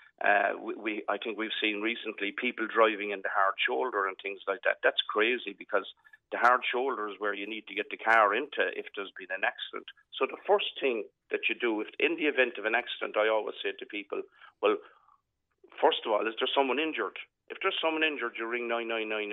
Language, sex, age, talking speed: English, male, 50-69, 225 wpm